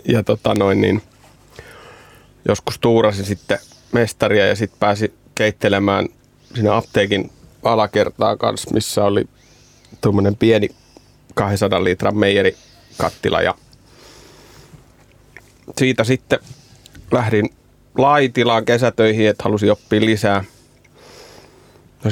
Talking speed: 90 wpm